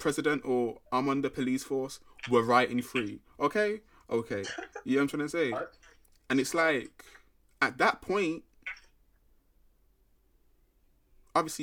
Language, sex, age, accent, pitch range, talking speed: English, male, 20-39, British, 110-150 Hz, 135 wpm